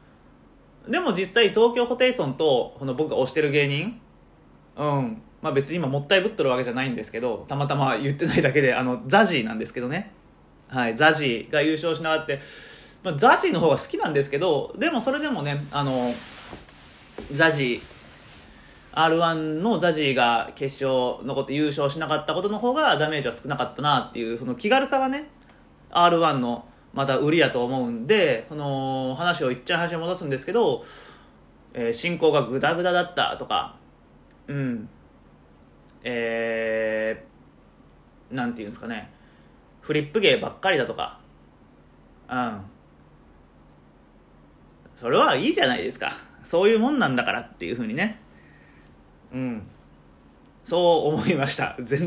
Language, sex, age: Japanese, male, 30-49